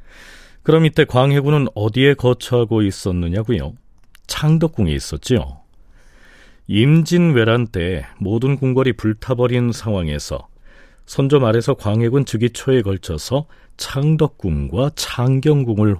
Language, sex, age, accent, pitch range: Korean, male, 40-59, native, 100-145 Hz